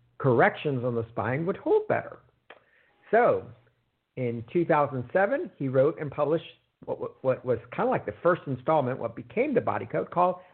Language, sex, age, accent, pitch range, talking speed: English, male, 50-69, American, 120-155 Hz, 165 wpm